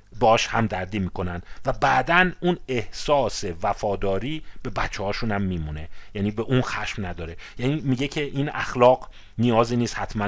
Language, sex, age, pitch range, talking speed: Persian, male, 40-59, 100-145 Hz, 150 wpm